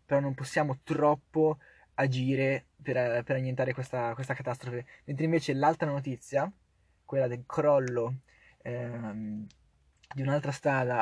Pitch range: 130-155 Hz